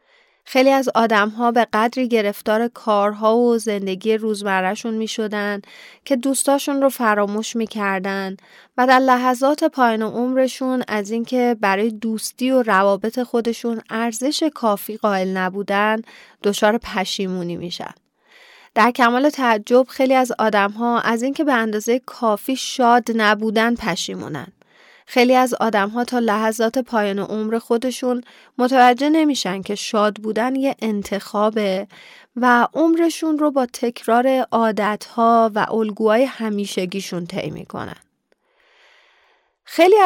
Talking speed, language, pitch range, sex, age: 115 wpm, Persian, 210-255 Hz, female, 30-49